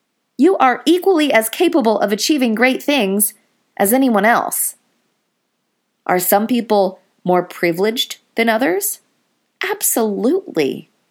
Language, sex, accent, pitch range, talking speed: English, female, American, 165-245 Hz, 110 wpm